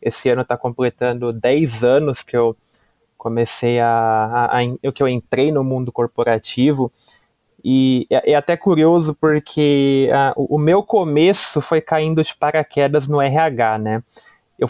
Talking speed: 150 wpm